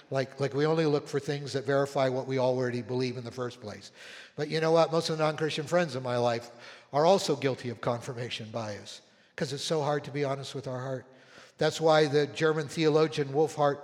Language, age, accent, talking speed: English, 60-79, American, 220 wpm